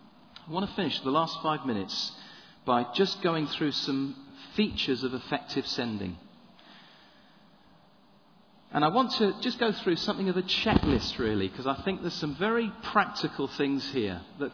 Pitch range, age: 150-210 Hz, 40-59